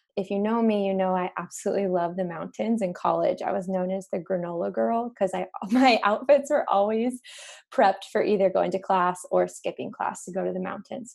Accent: American